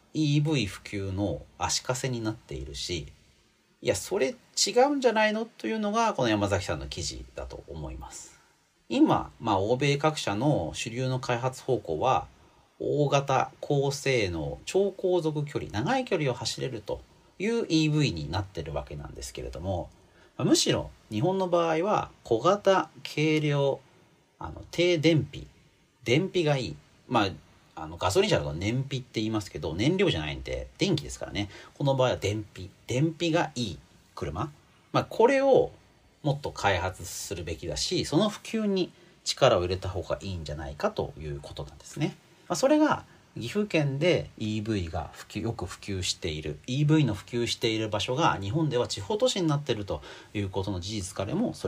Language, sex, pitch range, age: Japanese, male, 100-165 Hz, 40-59